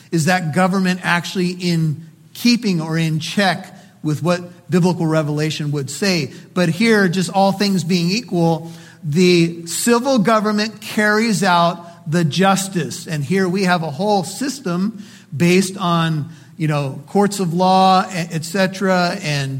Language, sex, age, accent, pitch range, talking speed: English, male, 50-69, American, 165-190 Hz, 140 wpm